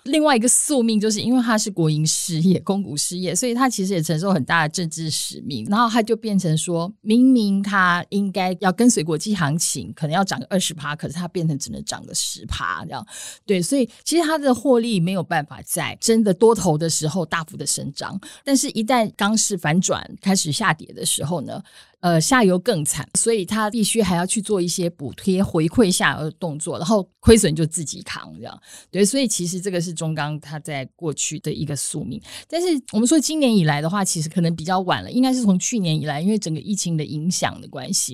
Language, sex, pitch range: Chinese, female, 160-210 Hz